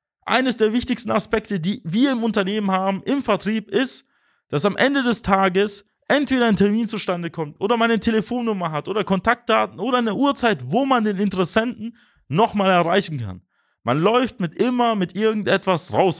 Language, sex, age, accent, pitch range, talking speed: German, male, 30-49, German, 150-235 Hz, 170 wpm